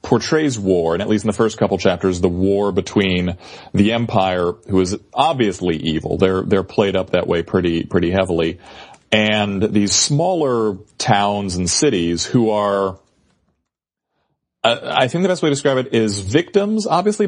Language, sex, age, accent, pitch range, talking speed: English, male, 30-49, American, 95-115 Hz, 165 wpm